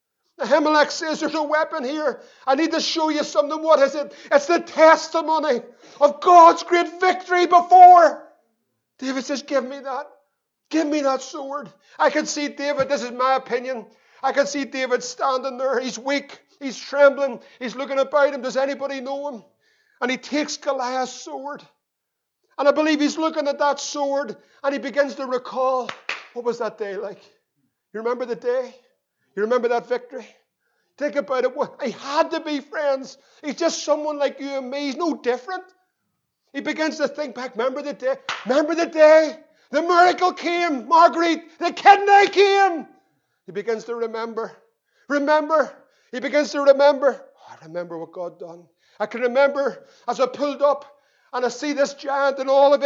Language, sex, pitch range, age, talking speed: English, male, 260-305 Hz, 50-69, 175 wpm